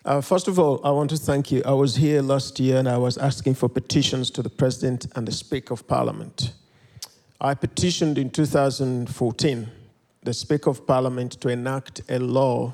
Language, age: English, 50-69